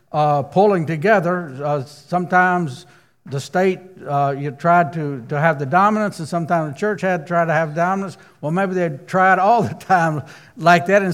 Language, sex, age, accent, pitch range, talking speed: English, male, 60-79, American, 155-220 Hz, 190 wpm